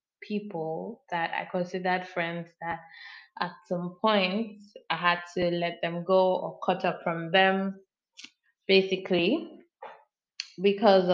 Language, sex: English, female